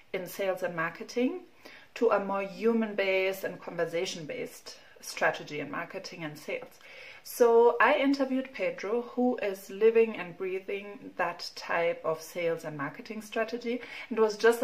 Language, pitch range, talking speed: English, 180-240 Hz, 140 wpm